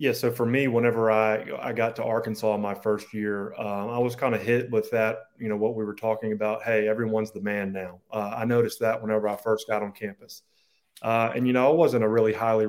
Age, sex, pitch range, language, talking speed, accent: 30-49, male, 105-115 Hz, English, 245 wpm, American